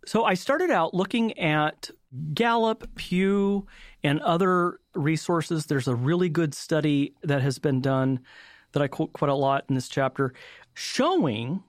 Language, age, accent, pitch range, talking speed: English, 40-59, American, 135-175 Hz, 155 wpm